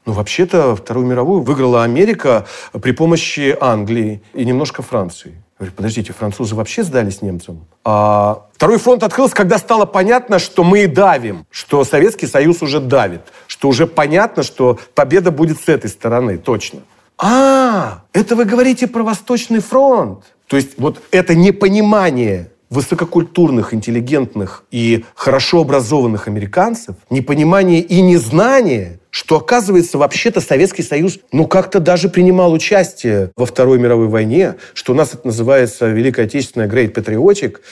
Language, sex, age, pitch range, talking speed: Russian, male, 40-59, 115-180 Hz, 140 wpm